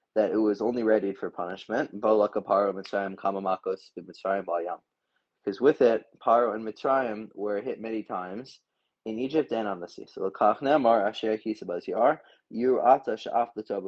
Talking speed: 100 wpm